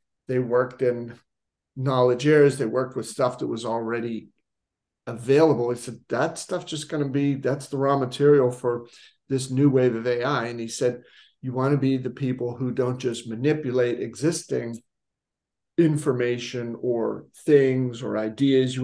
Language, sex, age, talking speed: English, male, 50-69, 160 wpm